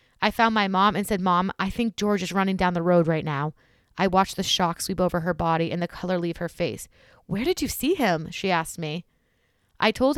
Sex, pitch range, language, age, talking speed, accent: female, 165-215 Hz, English, 20-39, 240 wpm, American